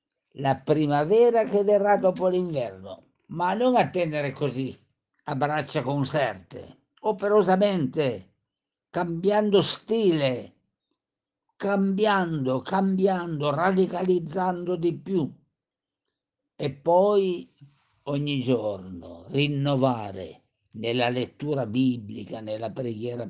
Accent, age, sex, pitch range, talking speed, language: native, 50-69, male, 115-165 Hz, 80 wpm, Italian